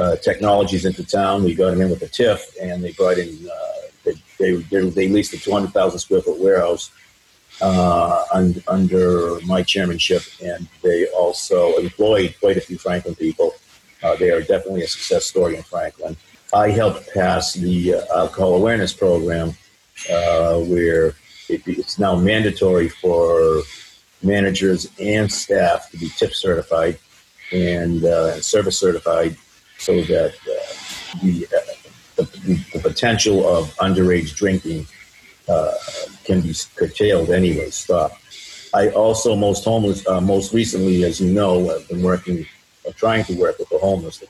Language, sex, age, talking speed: English, male, 50-69, 155 wpm